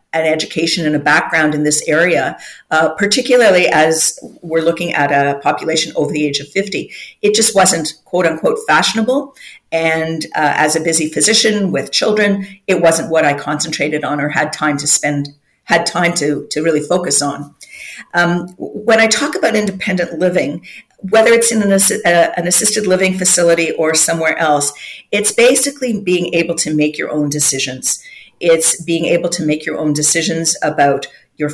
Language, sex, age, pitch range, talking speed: English, female, 50-69, 150-185 Hz, 175 wpm